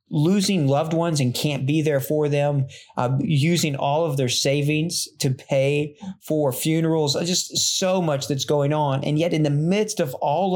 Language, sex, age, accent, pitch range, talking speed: English, male, 40-59, American, 130-160 Hz, 180 wpm